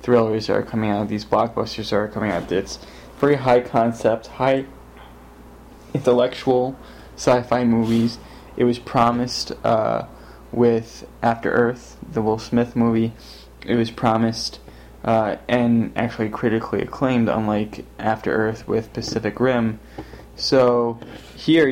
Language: English